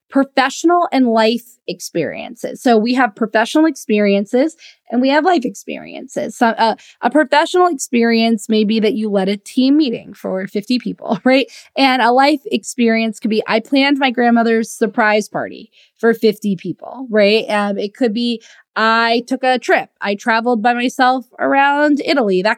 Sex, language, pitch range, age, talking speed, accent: female, English, 210-270 Hz, 20-39, 160 wpm, American